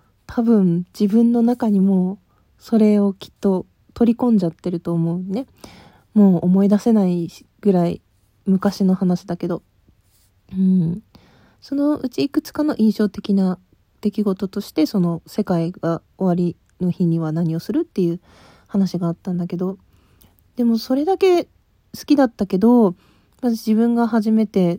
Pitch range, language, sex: 180-230 Hz, Japanese, female